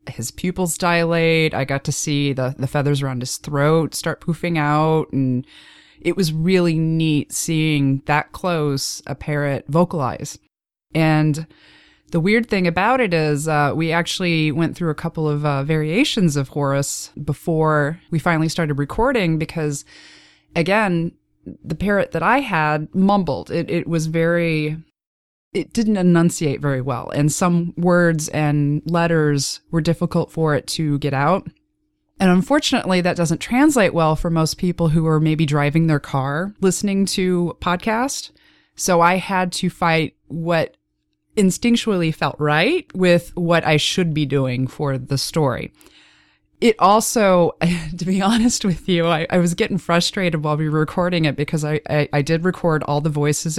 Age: 20-39